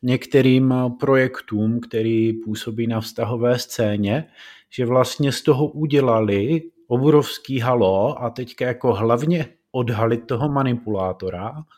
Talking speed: 105 wpm